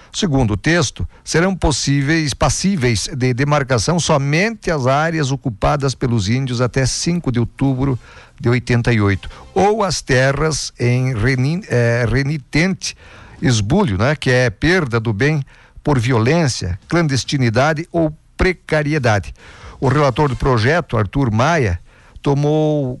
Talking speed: 120 wpm